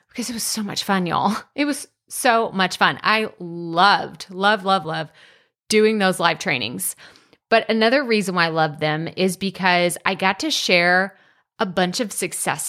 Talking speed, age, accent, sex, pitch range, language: 180 wpm, 30-49, American, female, 185-240 Hz, English